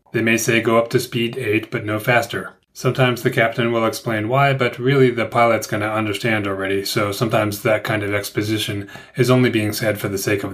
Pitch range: 105-130 Hz